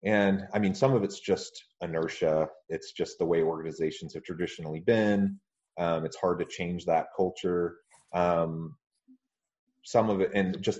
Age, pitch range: 30-49, 85-130 Hz